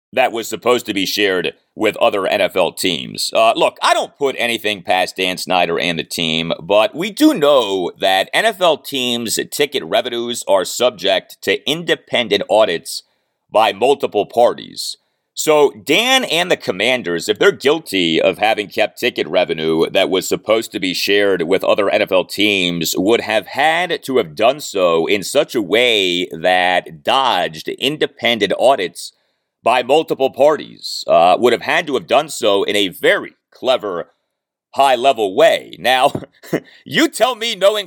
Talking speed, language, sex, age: 155 wpm, English, male, 40-59